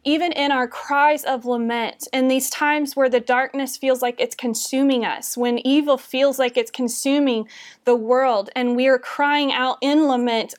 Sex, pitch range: female, 245-285 Hz